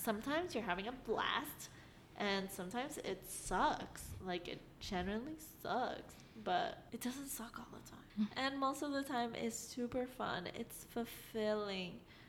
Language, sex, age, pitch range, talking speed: English, female, 10-29, 200-240 Hz, 145 wpm